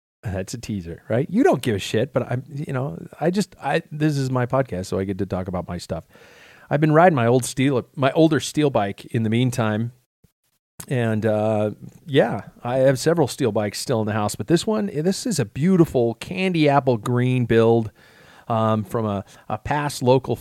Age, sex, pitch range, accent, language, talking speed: 40-59, male, 105-135 Hz, American, English, 205 wpm